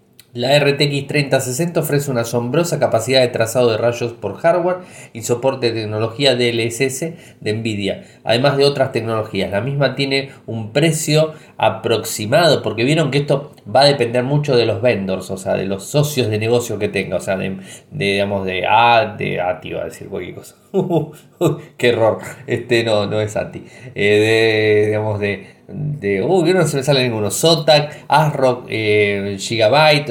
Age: 20-39